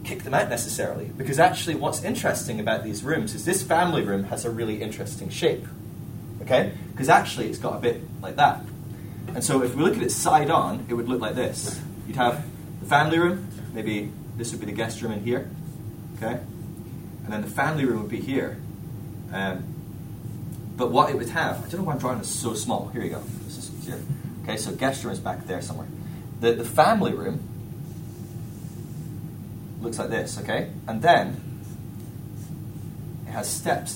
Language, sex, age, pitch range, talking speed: English, male, 20-39, 110-150 Hz, 190 wpm